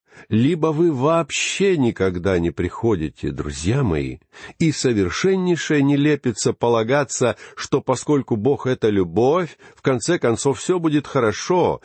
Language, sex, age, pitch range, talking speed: Russian, male, 50-69, 95-150 Hz, 125 wpm